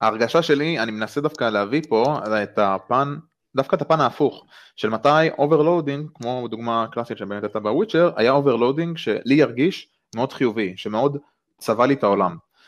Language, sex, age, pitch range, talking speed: Hebrew, male, 20-39, 110-155 Hz, 155 wpm